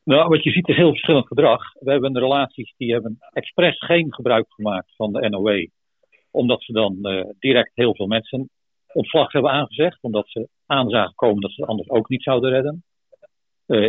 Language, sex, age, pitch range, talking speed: English, male, 50-69, 105-140 Hz, 190 wpm